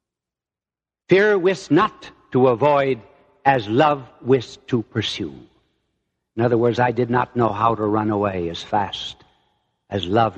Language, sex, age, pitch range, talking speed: English, male, 60-79, 115-160 Hz, 145 wpm